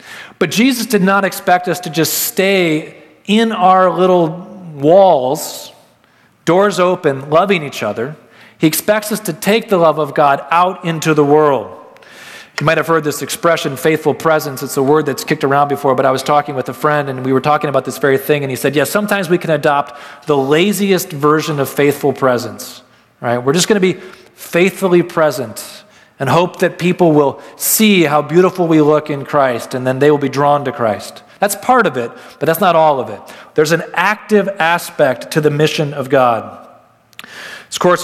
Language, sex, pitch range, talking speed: English, male, 140-175 Hz, 195 wpm